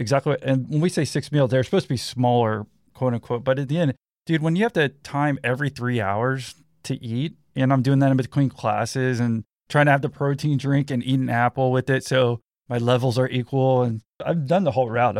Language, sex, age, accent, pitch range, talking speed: English, male, 20-39, American, 115-140 Hz, 235 wpm